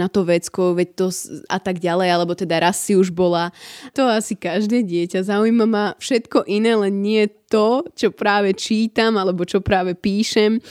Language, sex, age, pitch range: Slovak, female, 20-39, 185-230 Hz